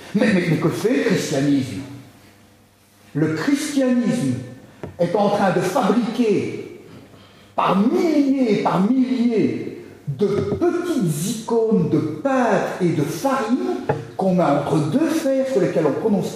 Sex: male